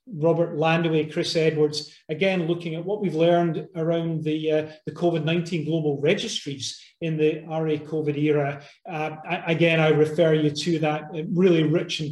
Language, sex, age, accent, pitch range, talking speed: English, male, 30-49, British, 155-180 Hz, 155 wpm